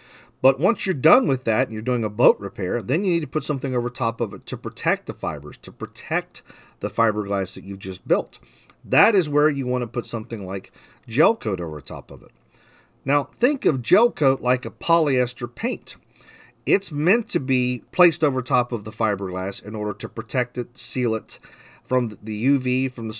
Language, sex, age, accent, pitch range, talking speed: English, male, 40-59, American, 110-145 Hz, 205 wpm